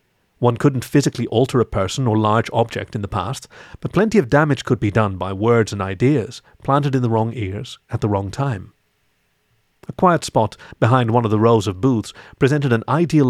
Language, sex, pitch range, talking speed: English, male, 105-135 Hz, 205 wpm